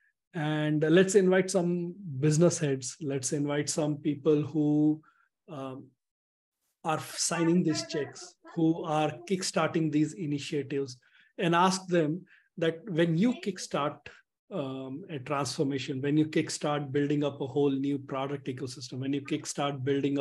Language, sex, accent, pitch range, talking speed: English, male, Indian, 135-165 Hz, 130 wpm